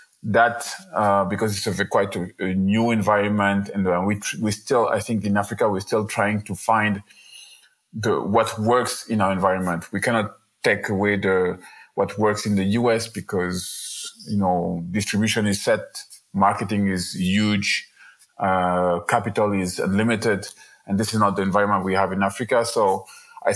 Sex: male